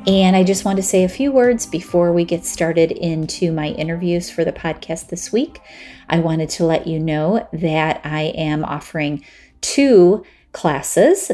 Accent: American